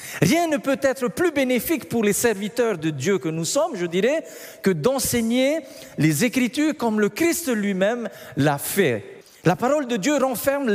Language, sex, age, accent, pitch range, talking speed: French, male, 50-69, French, 150-235 Hz, 175 wpm